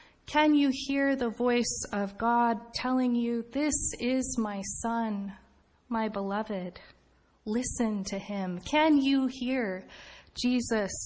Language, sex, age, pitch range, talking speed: English, female, 30-49, 200-255 Hz, 120 wpm